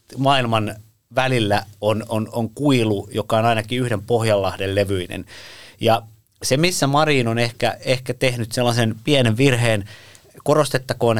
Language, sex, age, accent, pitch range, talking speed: Finnish, male, 30-49, native, 110-145 Hz, 130 wpm